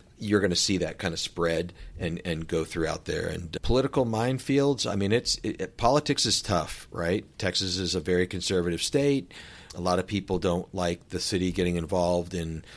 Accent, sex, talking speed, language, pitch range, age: American, male, 195 wpm, English, 85-105 Hz, 40-59